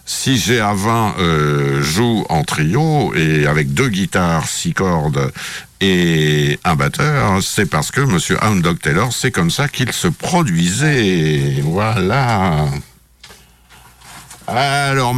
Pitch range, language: 90-140 Hz, French